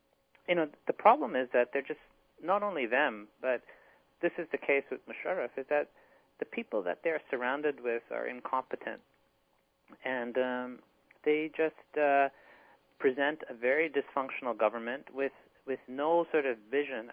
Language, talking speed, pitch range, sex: English, 155 wpm, 120-155 Hz, male